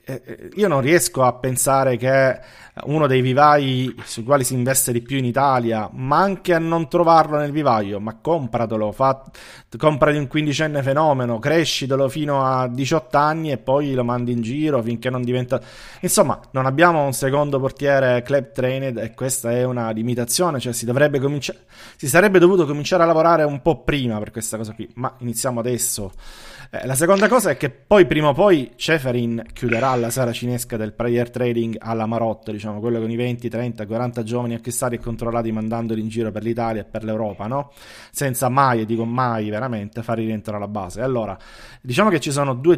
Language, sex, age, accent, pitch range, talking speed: Italian, male, 30-49, native, 115-140 Hz, 185 wpm